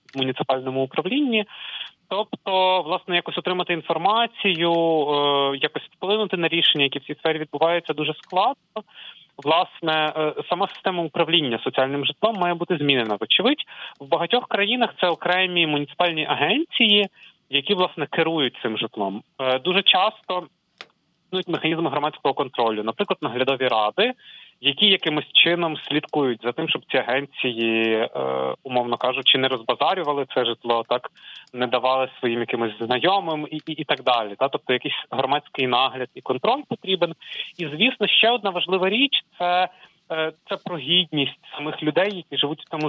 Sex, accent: male, native